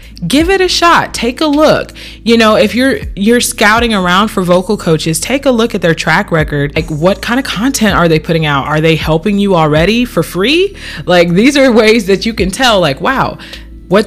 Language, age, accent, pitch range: English, 20-39, American, 155-195 Hz